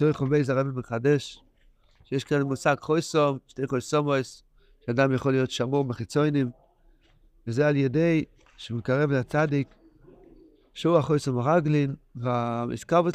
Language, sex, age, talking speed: Hebrew, male, 50-69, 110 wpm